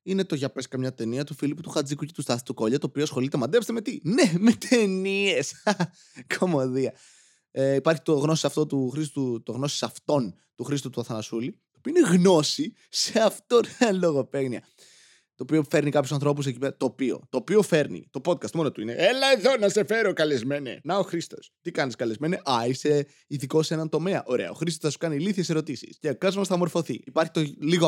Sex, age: male, 20-39